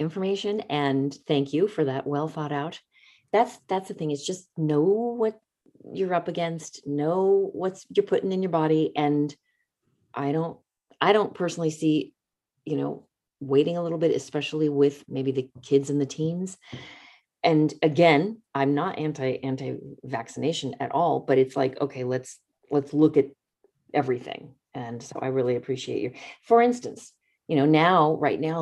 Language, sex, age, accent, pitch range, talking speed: English, female, 40-59, American, 140-180 Hz, 165 wpm